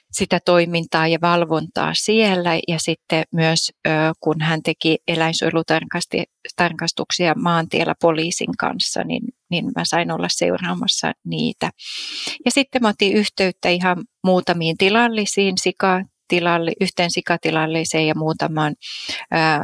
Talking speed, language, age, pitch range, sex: 105 wpm, Finnish, 30-49, 160-195 Hz, female